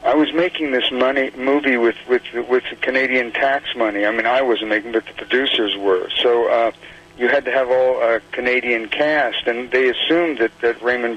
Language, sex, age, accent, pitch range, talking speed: English, male, 50-69, American, 115-130 Hz, 200 wpm